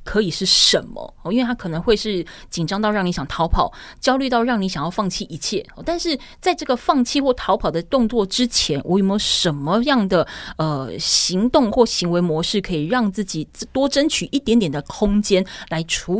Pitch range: 175-240 Hz